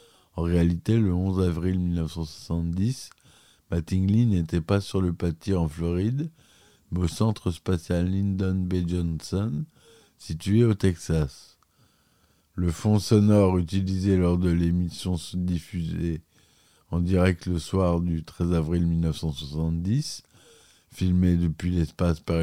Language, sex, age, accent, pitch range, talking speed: French, male, 50-69, French, 85-100 Hz, 120 wpm